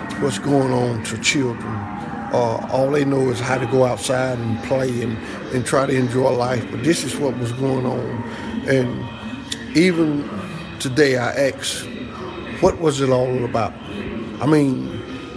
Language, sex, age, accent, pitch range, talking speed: English, male, 60-79, American, 120-145 Hz, 160 wpm